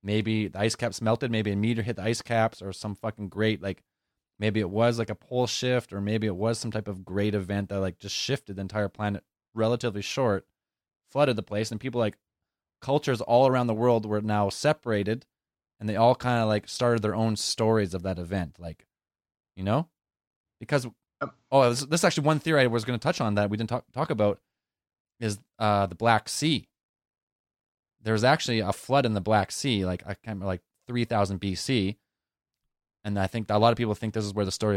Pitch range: 100-120 Hz